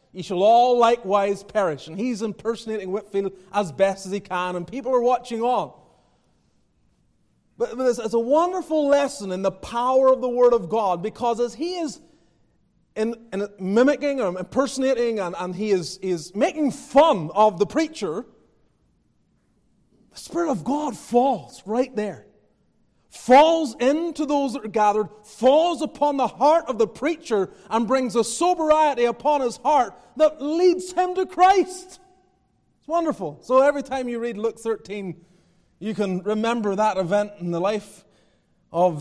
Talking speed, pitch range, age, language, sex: 155 wpm, 195-275 Hz, 30-49, English, male